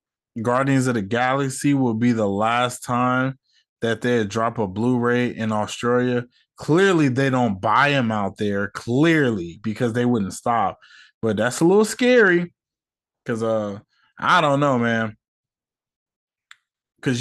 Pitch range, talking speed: 115-145 Hz, 140 wpm